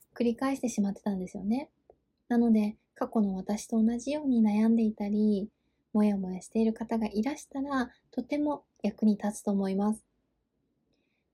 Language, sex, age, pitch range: Japanese, female, 20-39, 205-250 Hz